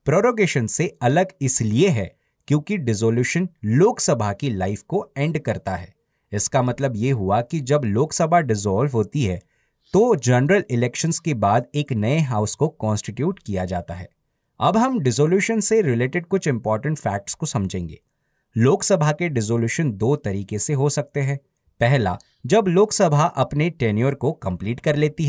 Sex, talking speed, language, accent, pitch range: male, 155 wpm, Hindi, native, 110-160 Hz